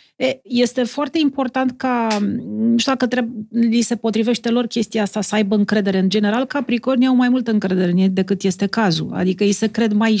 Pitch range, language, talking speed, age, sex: 200-250 Hz, Romanian, 180 wpm, 40-59, female